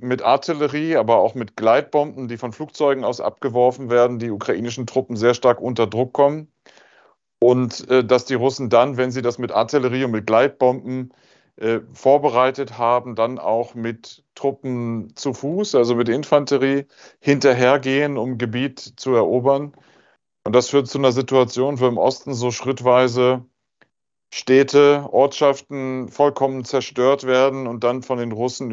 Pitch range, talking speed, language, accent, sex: 120-135 Hz, 150 wpm, German, German, male